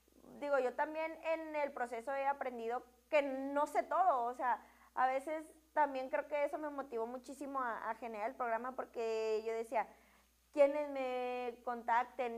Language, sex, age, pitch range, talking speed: Spanish, female, 20-39, 245-280 Hz, 165 wpm